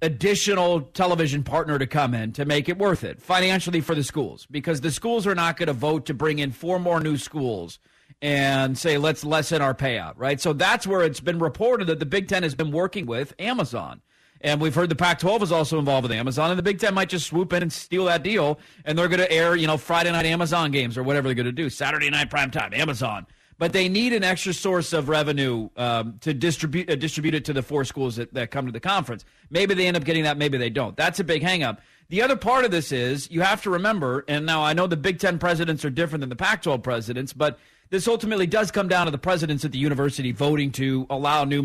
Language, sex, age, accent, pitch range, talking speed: English, male, 40-59, American, 140-175 Hz, 250 wpm